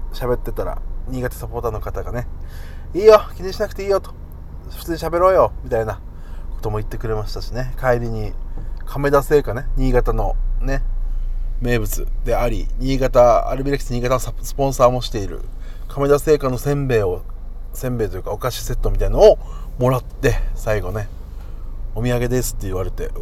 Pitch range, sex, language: 105-135 Hz, male, Japanese